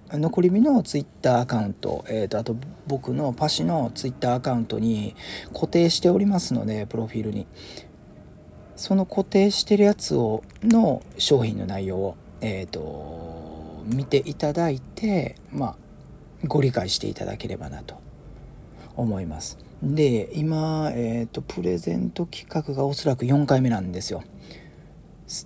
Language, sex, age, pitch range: Japanese, male, 40-59, 110-165 Hz